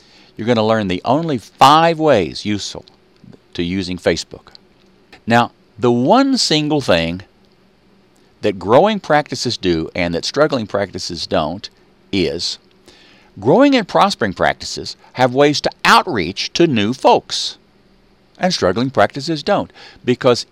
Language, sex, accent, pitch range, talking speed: English, male, American, 100-165 Hz, 125 wpm